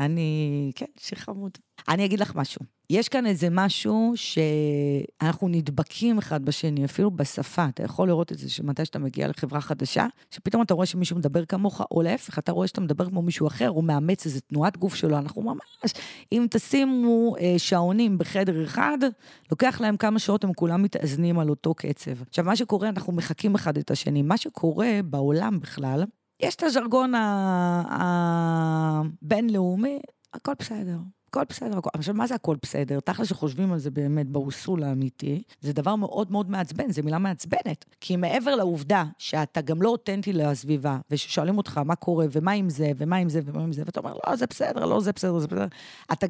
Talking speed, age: 180 wpm, 30-49